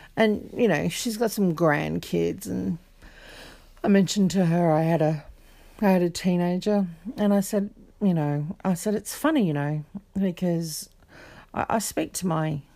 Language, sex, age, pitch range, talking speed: English, female, 40-59, 155-205 Hz, 170 wpm